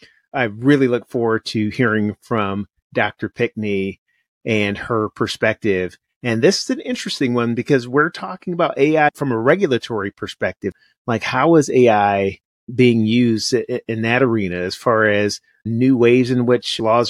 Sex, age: male, 30-49